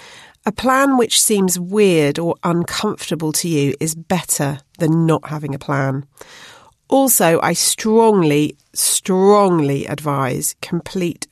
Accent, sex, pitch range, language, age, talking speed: British, female, 160-210 Hz, English, 40-59, 115 wpm